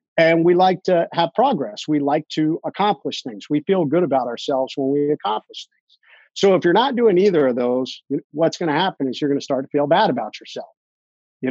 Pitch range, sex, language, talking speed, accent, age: 145-200 Hz, male, English, 225 wpm, American, 50-69